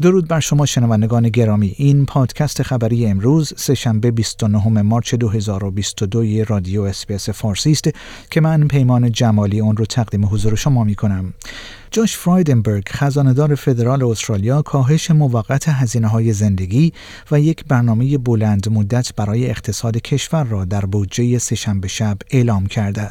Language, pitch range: Persian, 110-145 Hz